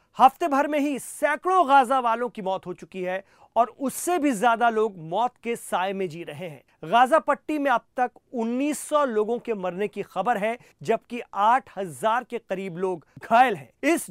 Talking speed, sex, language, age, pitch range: 185 wpm, male, Hindi, 40-59, 205-265 Hz